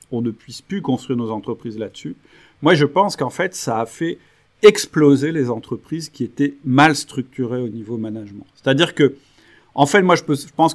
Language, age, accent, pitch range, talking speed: French, 40-59, French, 120-155 Hz, 185 wpm